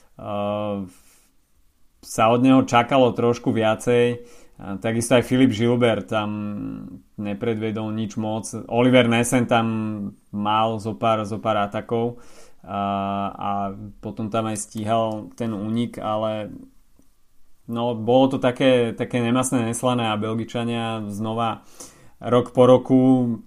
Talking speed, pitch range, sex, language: 120 wpm, 110-120 Hz, male, Slovak